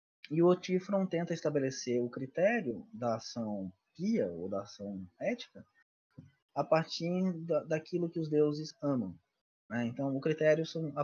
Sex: male